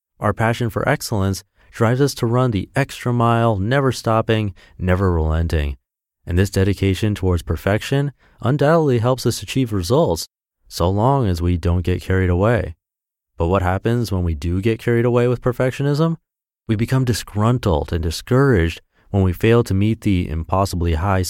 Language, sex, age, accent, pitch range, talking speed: English, male, 30-49, American, 90-120 Hz, 160 wpm